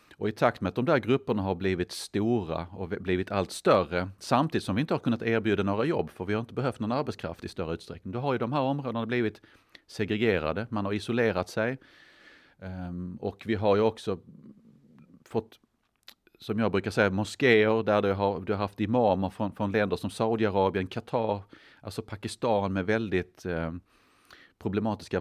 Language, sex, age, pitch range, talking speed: Danish, male, 40-59, 95-115 Hz, 180 wpm